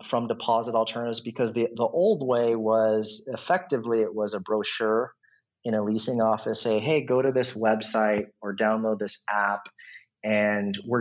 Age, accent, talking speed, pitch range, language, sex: 30-49, American, 165 wpm, 105-120 Hz, English, male